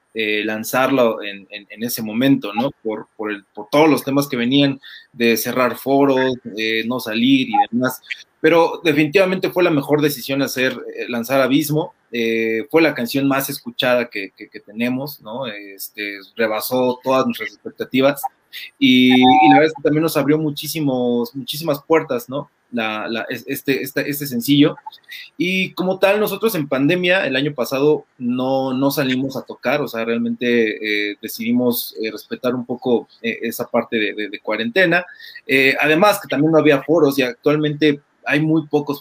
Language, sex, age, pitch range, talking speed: Spanish, male, 20-39, 115-150 Hz, 170 wpm